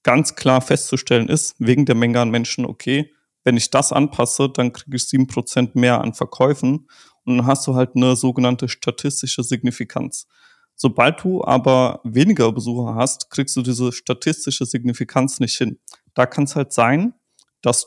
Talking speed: 165 wpm